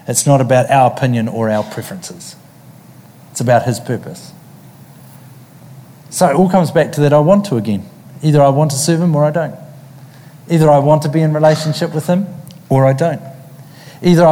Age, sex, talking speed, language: 50-69, male, 190 wpm, English